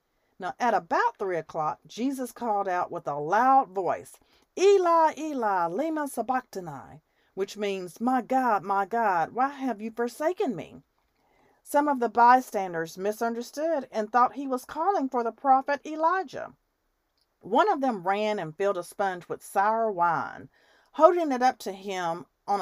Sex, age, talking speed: female, 40-59, 155 wpm